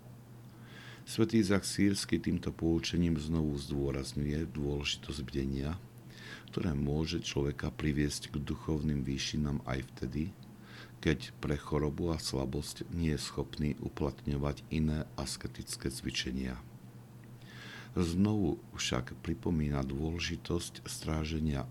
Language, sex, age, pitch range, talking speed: Slovak, male, 60-79, 70-85 Hz, 95 wpm